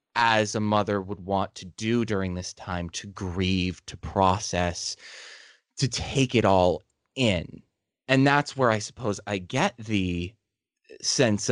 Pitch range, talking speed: 100-120 Hz, 145 wpm